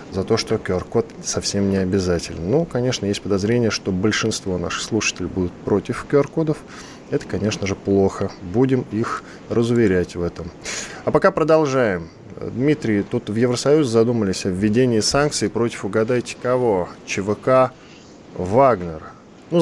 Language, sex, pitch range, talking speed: Russian, male, 90-125 Hz, 135 wpm